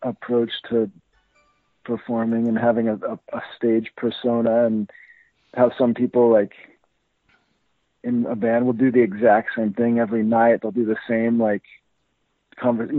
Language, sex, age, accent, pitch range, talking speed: Hebrew, male, 40-59, American, 115-130 Hz, 150 wpm